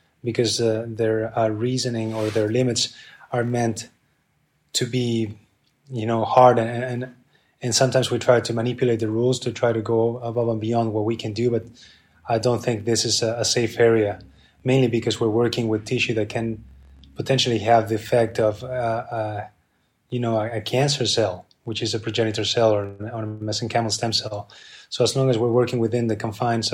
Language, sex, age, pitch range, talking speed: English, male, 20-39, 110-125 Hz, 195 wpm